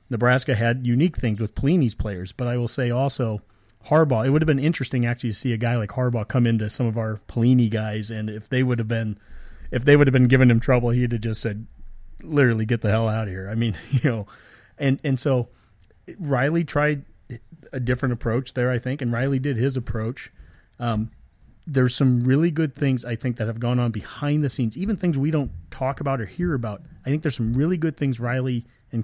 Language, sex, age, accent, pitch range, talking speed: English, male, 30-49, American, 115-140 Hz, 225 wpm